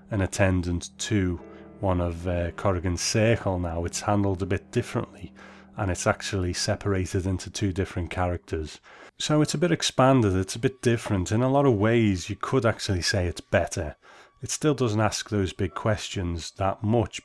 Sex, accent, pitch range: male, British, 90-110 Hz